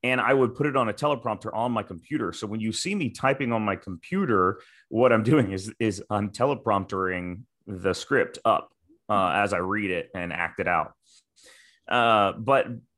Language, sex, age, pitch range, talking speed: English, male, 30-49, 95-120 Hz, 190 wpm